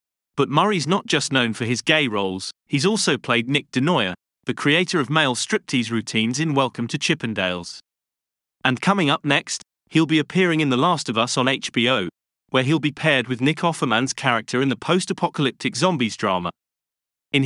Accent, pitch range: British, 115-160 Hz